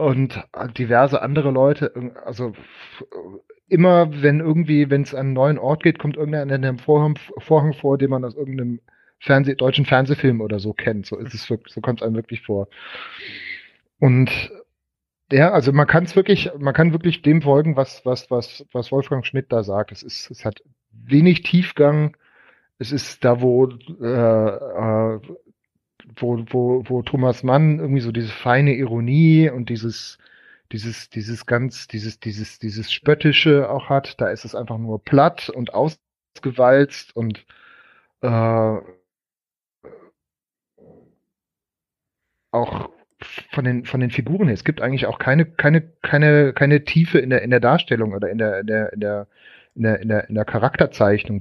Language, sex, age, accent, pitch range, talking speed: German, male, 30-49, German, 115-145 Hz, 160 wpm